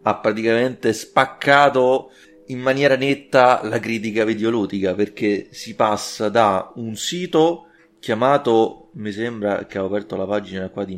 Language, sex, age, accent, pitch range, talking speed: Italian, male, 30-49, native, 100-125 Hz, 135 wpm